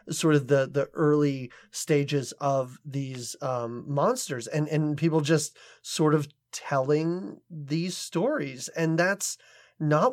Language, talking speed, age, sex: English, 130 wpm, 30-49, male